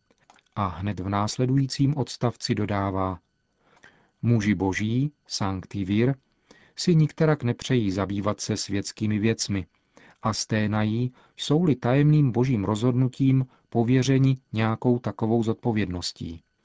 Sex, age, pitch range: male, 40-59, 105-130 Hz